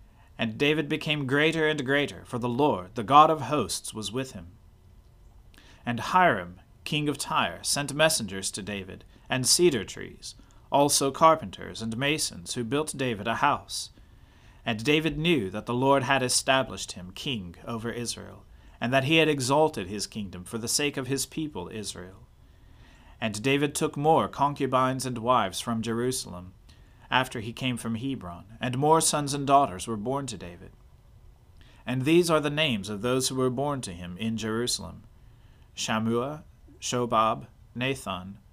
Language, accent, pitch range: English, American, 100-140 Hz